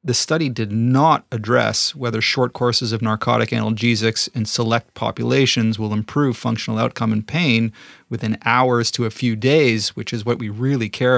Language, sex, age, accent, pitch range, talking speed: English, male, 30-49, American, 110-125 Hz, 170 wpm